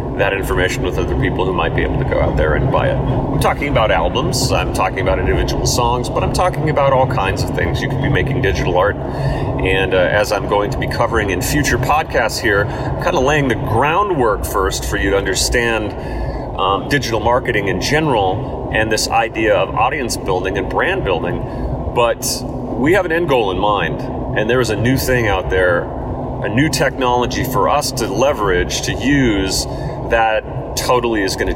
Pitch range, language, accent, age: 105-130 Hz, English, American, 30-49